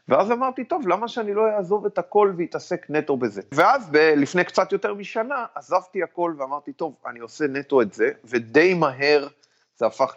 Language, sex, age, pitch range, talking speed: Hebrew, male, 30-49, 120-185 Hz, 185 wpm